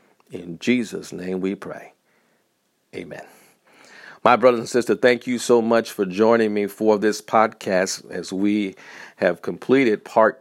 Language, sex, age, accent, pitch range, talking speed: English, male, 50-69, American, 100-115 Hz, 145 wpm